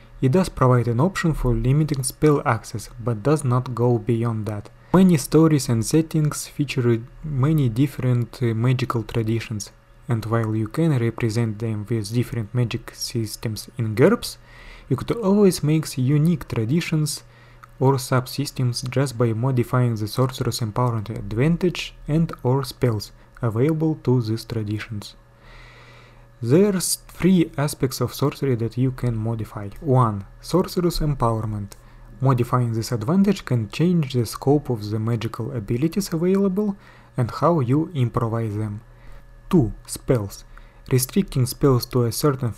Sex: male